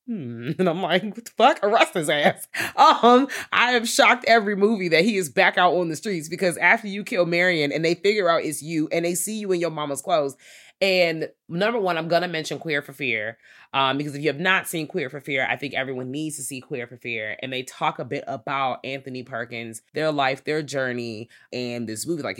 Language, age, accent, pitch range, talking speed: English, 20-39, American, 135-180 Hz, 235 wpm